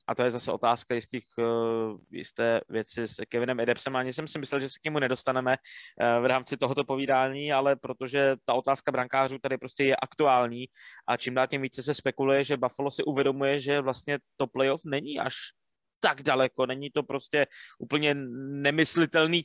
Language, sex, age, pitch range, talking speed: Czech, male, 20-39, 125-150 Hz, 175 wpm